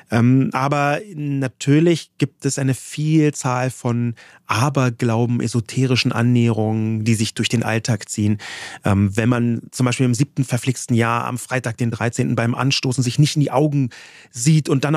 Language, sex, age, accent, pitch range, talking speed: German, male, 30-49, German, 120-155 Hz, 160 wpm